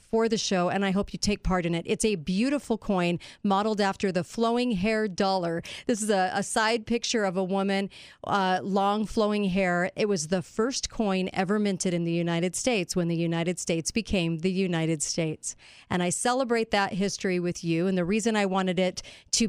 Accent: American